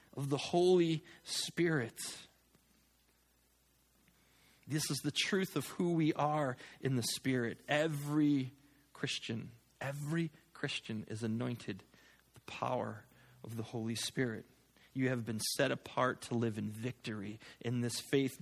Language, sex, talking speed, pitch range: English, male, 130 wpm, 120-160 Hz